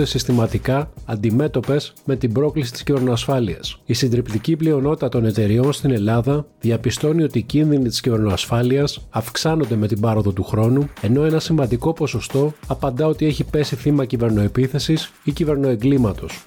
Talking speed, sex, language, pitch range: 140 wpm, male, Greek, 115-140 Hz